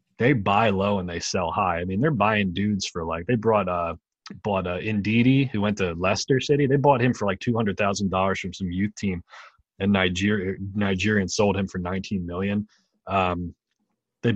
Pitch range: 95-110 Hz